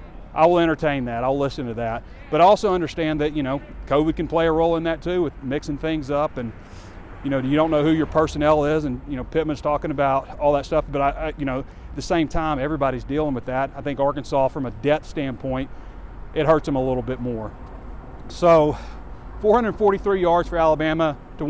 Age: 30-49